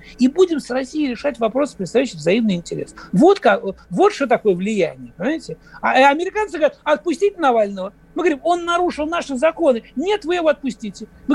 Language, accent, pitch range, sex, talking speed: Russian, native, 250-305 Hz, male, 170 wpm